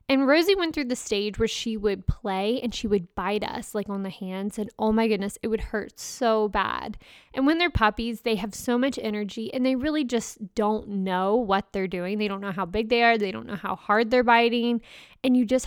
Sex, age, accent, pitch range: female, 20-39, American, 200-245 Hz